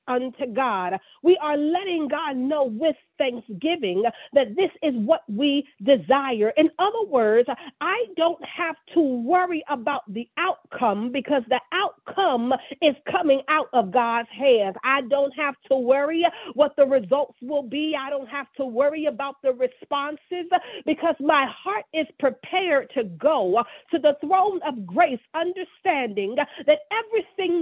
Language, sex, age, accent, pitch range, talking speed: English, female, 40-59, American, 265-335 Hz, 150 wpm